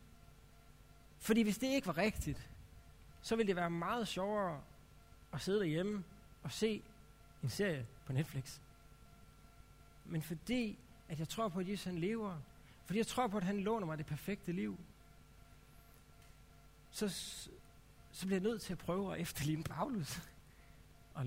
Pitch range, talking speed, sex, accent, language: 160-230 Hz, 150 wpm, male, native, Danish